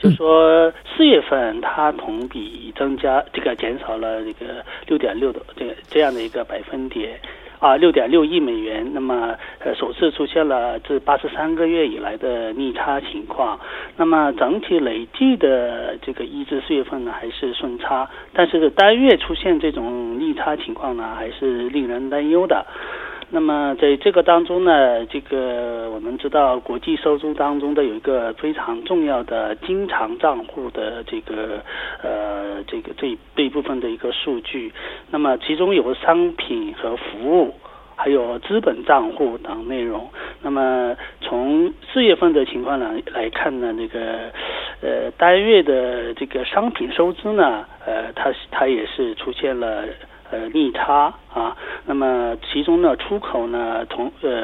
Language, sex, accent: Korean, male, Chinese